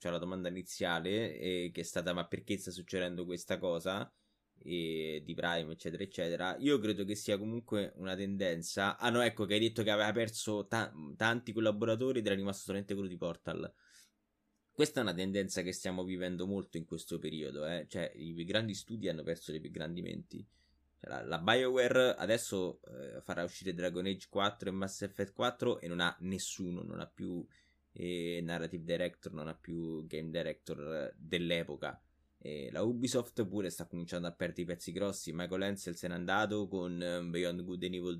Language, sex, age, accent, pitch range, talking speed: Italian, male, 20-39, native, 85-105 Hz, 190 wpm